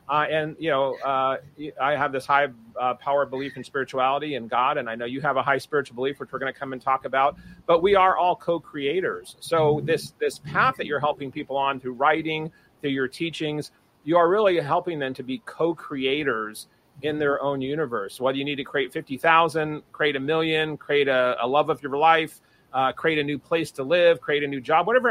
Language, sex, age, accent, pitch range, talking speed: English, male, 40-59, American, 135-160 Hz, 225 wpm